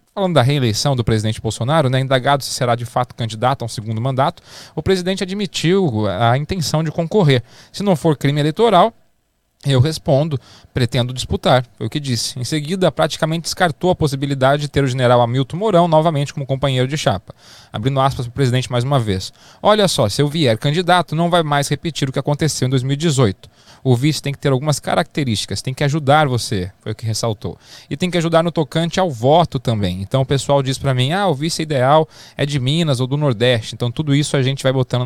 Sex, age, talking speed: male, 20-39, 210 wpm